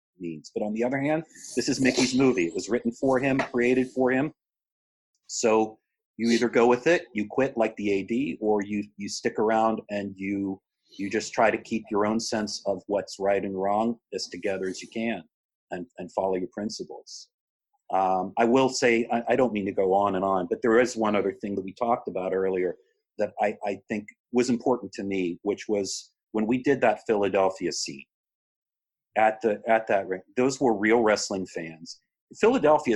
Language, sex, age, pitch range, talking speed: English, male, 40-59, 100-130 Hz, 200 wpm